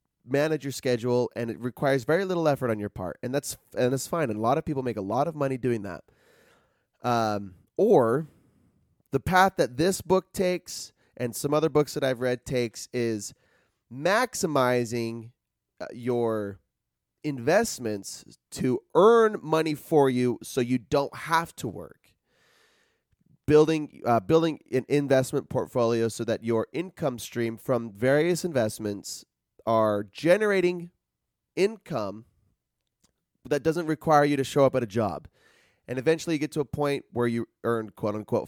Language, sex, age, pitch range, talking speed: English, male, 30-49, 110-155 Hz, 155 wpm